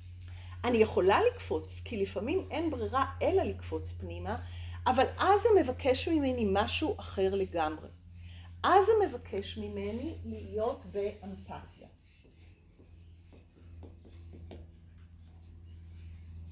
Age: 40-59